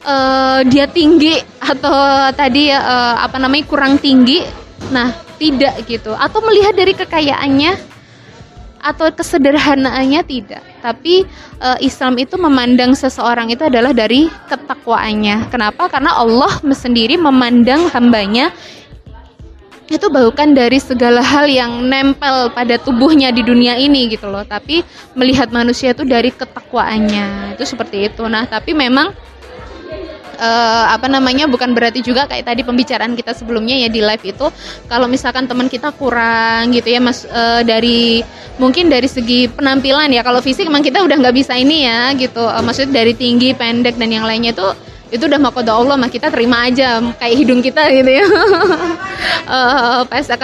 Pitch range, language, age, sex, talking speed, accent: 235-280 Hz, Indonesian, 20-39, female, 150 wpm, native